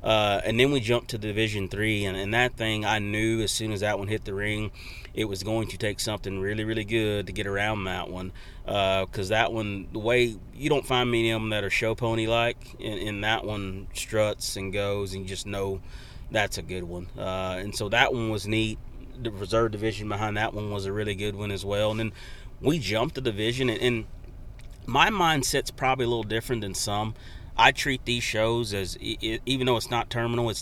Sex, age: male, 30-49